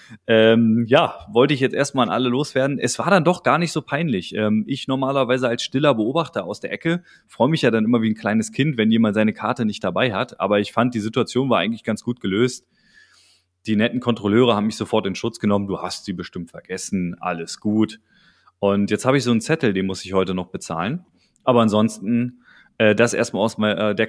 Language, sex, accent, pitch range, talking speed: German, male, German, 110-135 Hz, 215 wpm